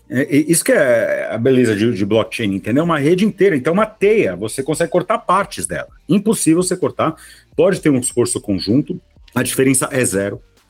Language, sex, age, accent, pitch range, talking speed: Portuguese, male, 50-69, Brazilian, 110-165 Hz, 185 wpm